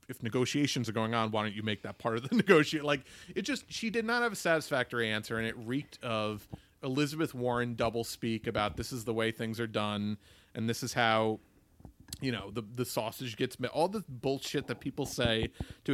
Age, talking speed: 30-49, 220 wpm